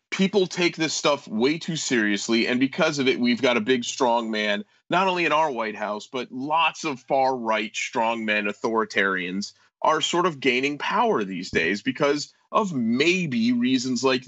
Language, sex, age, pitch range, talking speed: English, male, 30-49, 130-205 Hz, 170 wpm